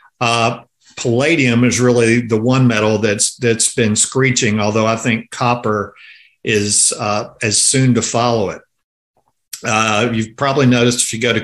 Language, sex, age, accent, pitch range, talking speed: English, male, 50-69, American, 105-130 Hz, 155 wpm